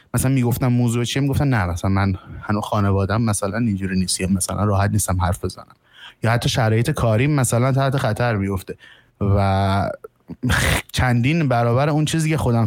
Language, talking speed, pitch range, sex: Persian, 155 wpm, 110-140 Hz, male